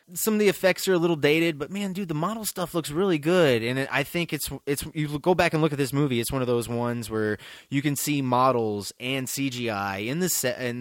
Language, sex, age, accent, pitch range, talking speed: English, male, 20-39, American, 115-155 Hz, 255 wpm